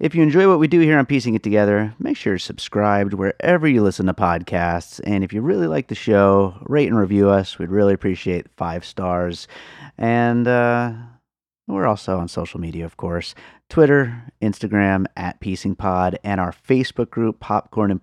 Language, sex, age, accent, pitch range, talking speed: English, male, 30-49, American, 95-120 Hz, 185 wpm